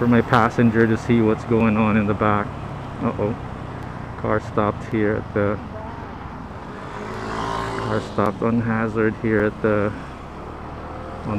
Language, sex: English, male